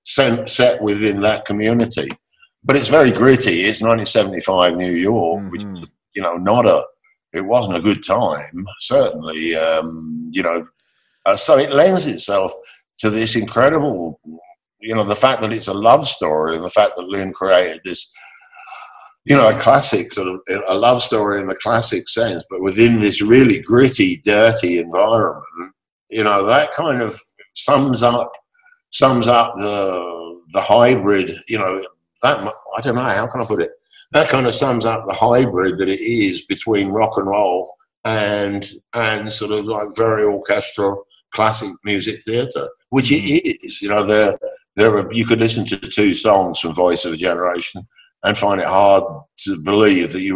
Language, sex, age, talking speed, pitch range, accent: English, male, 50-69, 175 wpm, 95-120 Hz, British